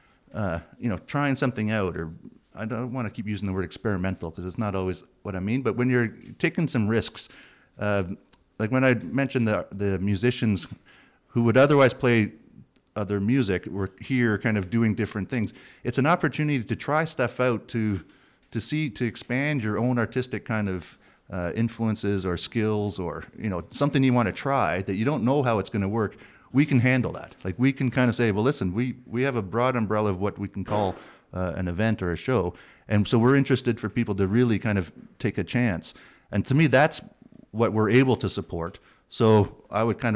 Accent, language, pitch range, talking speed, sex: American, English, 95-125 Hz, 215 wpm, male